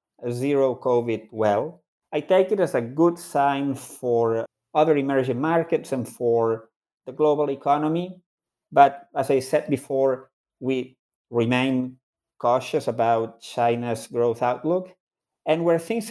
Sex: male